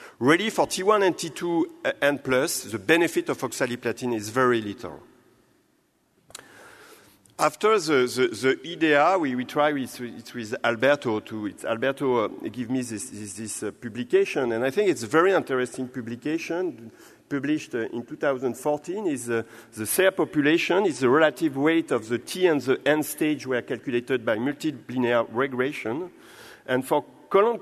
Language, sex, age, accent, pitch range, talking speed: English, male, 50-69, French, 125-170 Hz, 160 wpm